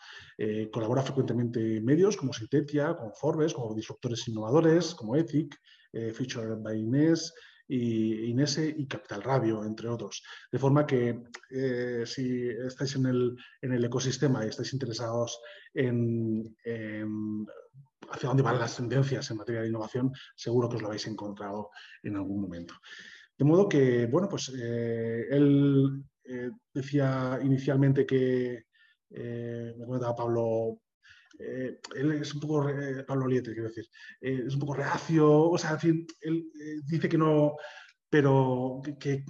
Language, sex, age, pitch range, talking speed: Spanish, male, 30-49, 115-140 Hz, 150 wpm